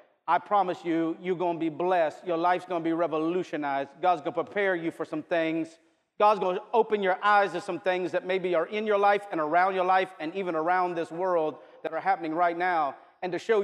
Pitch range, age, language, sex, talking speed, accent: 165-200 Hz, 40-59, English, male, 240 wpm, American